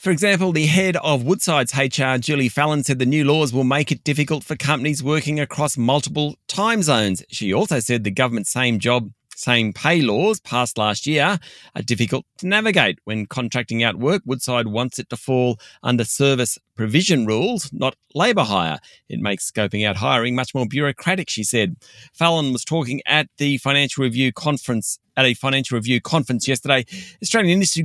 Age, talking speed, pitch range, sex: 40-59, 180 wpm, 120-155 Hz, male